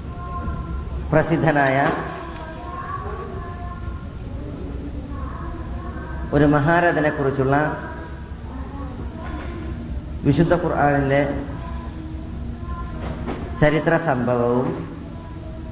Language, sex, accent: Malayalam, female, native